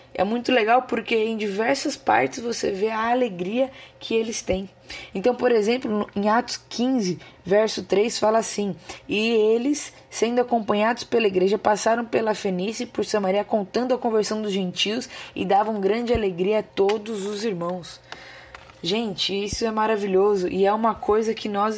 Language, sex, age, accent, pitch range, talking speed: Portuguese, female, 20-39, Brazilian, 205-255 Hz, 165 wpm